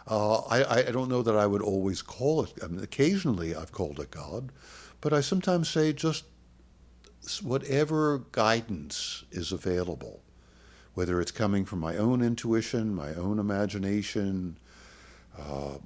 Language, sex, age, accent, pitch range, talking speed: English, male, 60-79, American, 85-115 Hz, 140 wpm